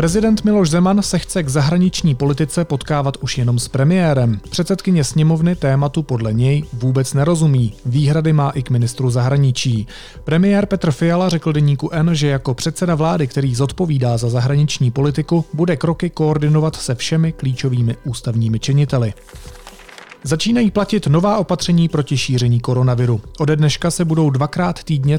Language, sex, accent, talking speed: Czech, male, native, 150 wpm